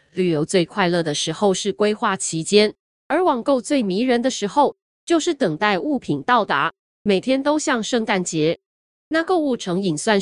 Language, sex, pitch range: Chinese, female, 180-280 Hz